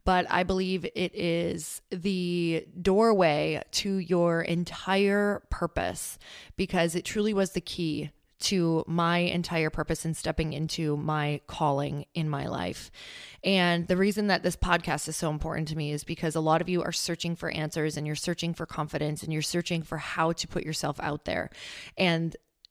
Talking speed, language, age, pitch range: 175 wpm, English, 20-39, 160-185 Hz